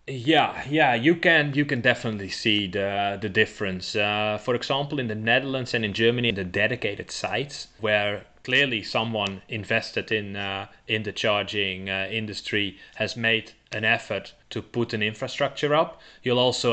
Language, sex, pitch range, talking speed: English, male, 110-145 Hz, 165 wpm